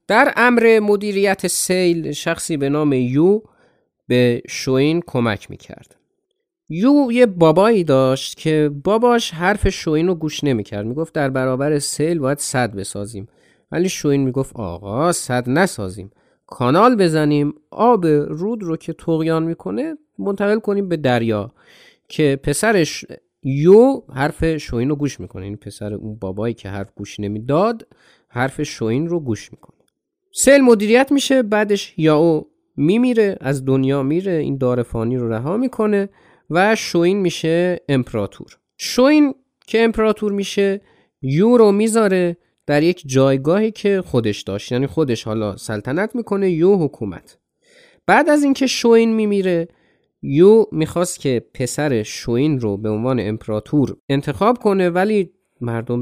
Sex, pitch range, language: male, 125-200 Hz, Persian